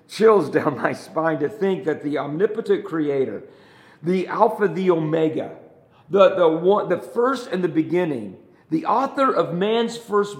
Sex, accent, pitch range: male, American, 155-225 Hz